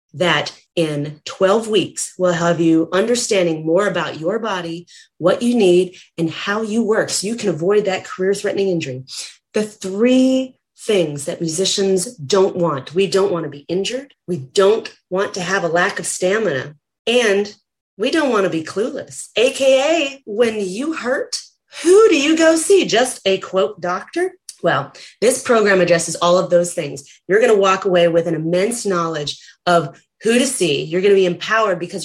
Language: English